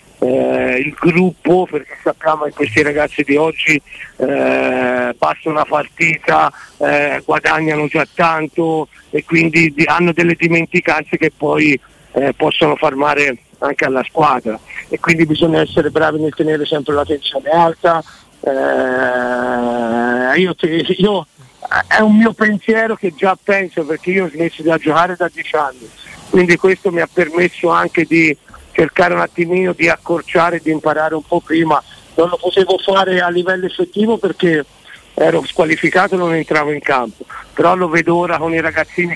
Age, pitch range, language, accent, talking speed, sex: 50-69, 155-180 Hz, Italian, native, 155 wpm, male